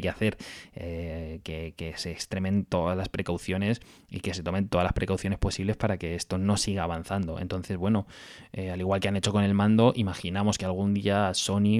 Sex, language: male, Spanish